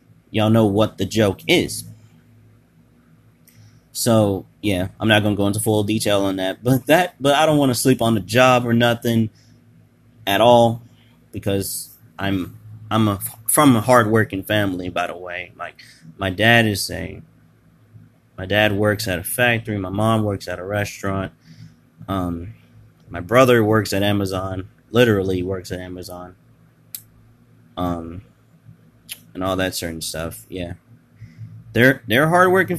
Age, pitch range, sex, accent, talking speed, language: 20-39, 100-125 Hz, male, American, 150 wpm, English